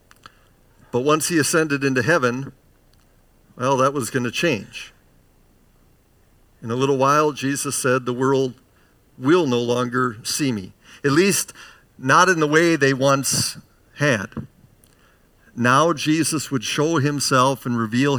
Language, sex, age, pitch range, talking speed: English, male, 50-69, 120-150 Hz, 135 wpm